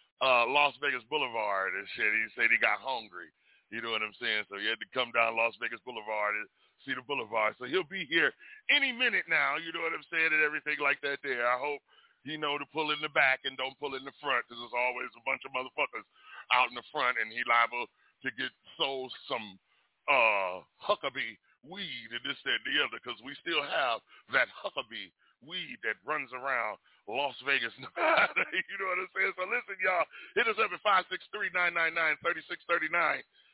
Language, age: English, 40-59